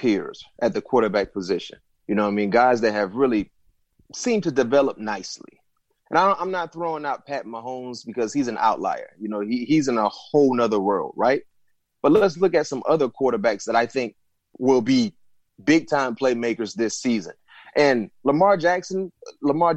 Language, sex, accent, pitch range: English, male, American, 120-150 Hz